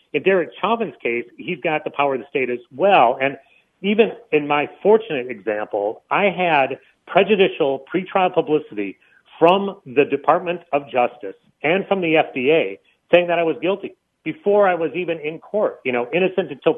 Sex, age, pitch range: male, 40-59, 135-190 Hz